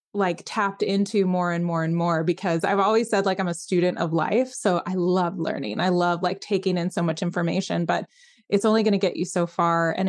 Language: English